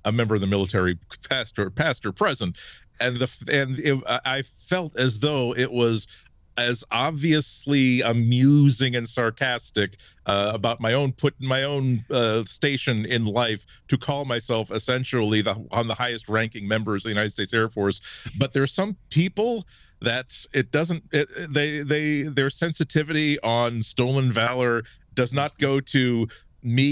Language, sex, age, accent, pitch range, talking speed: English, male, 40-59, American, 115-150 Hz, 165 wpm